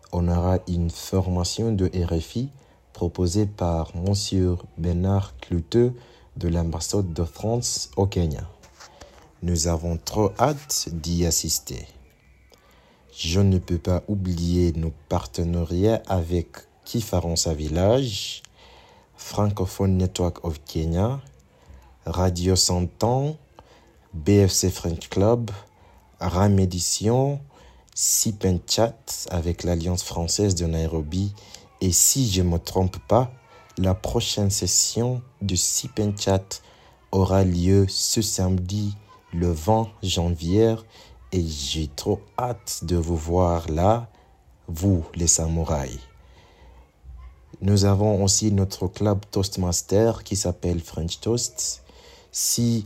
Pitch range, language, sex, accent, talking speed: 85-105 Hz, French, male, French, 105 wpm